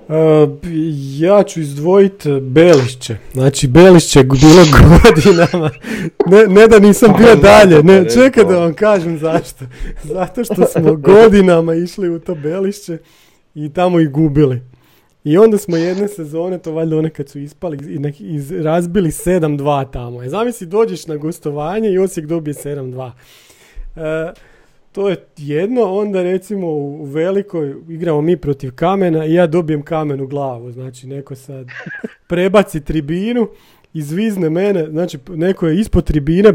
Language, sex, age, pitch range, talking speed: Croatian, male, 40-59, 145-185 Hz, 140 wpm